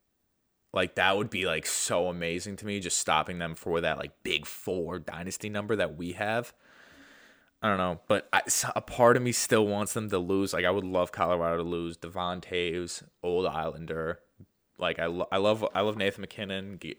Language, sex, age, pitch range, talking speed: English, male, 20-39, 85-105 Hz, 200 wpm